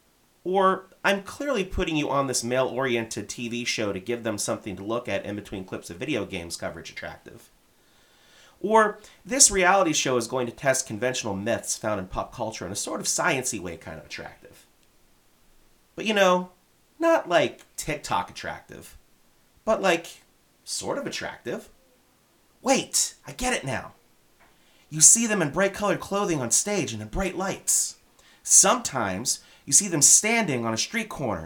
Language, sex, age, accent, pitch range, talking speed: English, male, 30-49, American, 115-190 Hz, 165 wpm